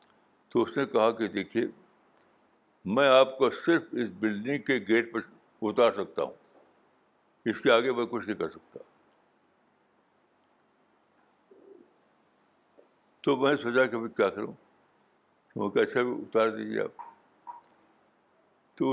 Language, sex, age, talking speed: Urdu, male, 60-79, 125 wpm